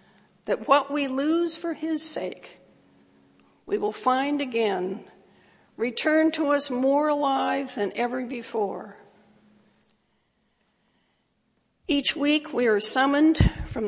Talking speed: 110 wpm